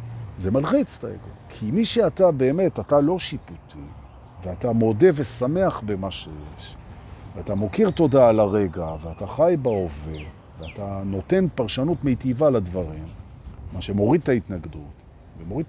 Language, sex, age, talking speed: Hebrew, male, 50-69, 125 wpm